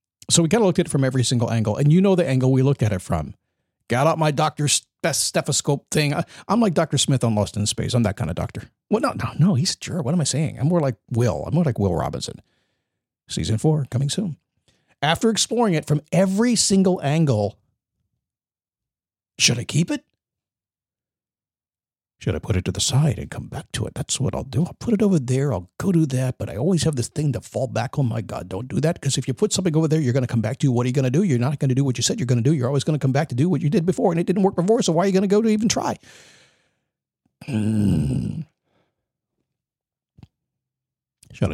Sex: male